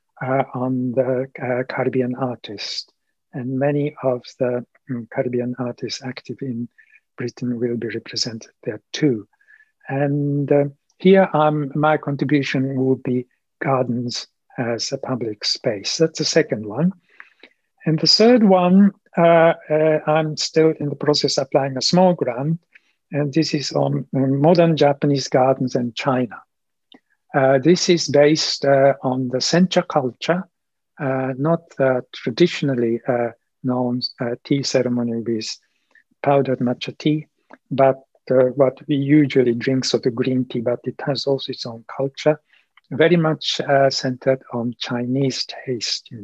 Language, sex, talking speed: English, male, 145 wpm